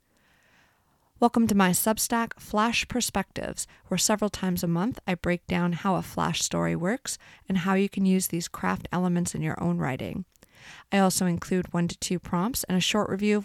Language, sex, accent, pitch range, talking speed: English, female, American, 180-215 Hz, 190 wpm